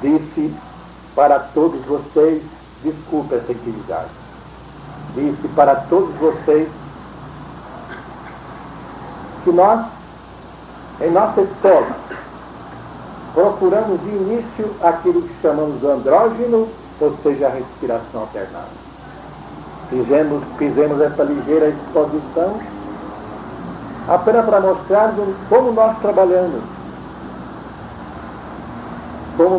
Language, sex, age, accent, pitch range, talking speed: Portuguese, male, 60-79, Brazilian, 145-215 Hz, 80 wpm